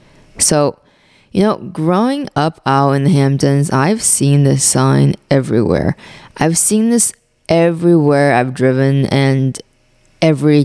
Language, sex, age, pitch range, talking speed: English, female, 20-39, 135-170 Hz, 125 wpm